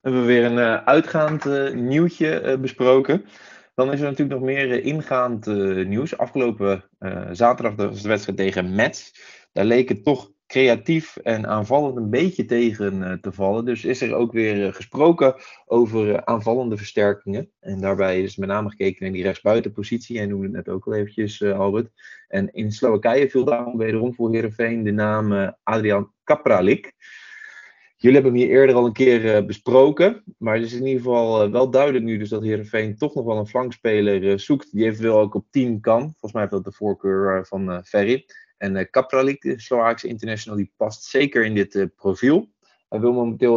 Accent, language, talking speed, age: Dutch, English, 185 wpm, 20-39